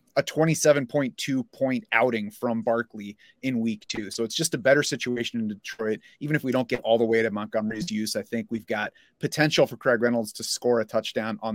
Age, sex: 30-49, male